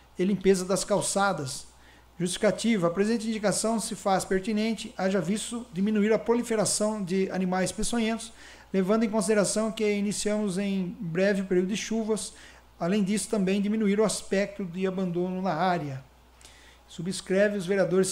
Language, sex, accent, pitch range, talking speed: Portuguese, male, Brazilian, 190-220 Hz, 140 wpm